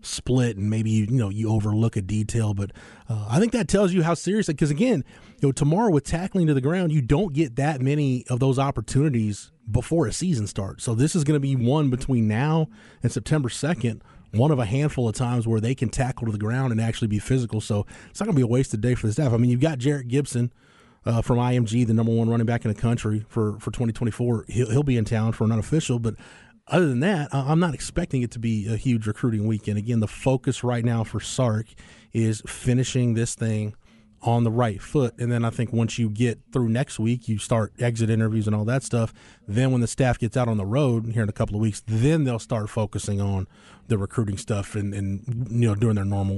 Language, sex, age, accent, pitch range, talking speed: English, male, 30-49, American, 110-135 Hz, 240 wpm